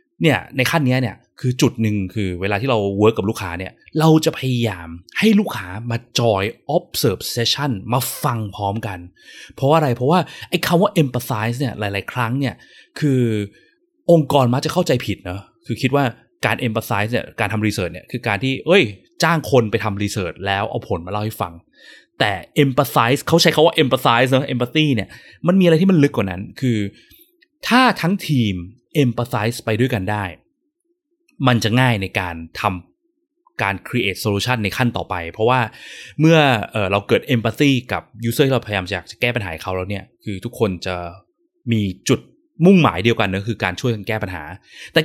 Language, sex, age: Thai, male, 20-39